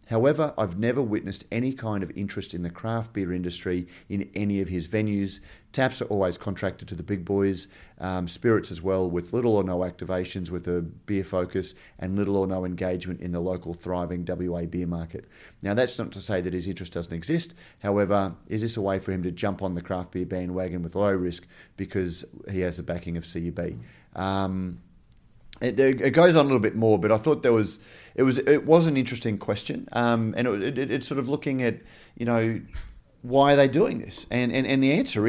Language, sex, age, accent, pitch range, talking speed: English, male, 30-49, Australian, 90-115 Hz, 215 wpm